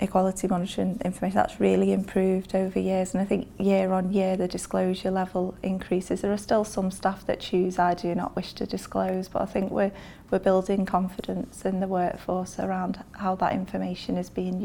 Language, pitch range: English, 185-195 Hz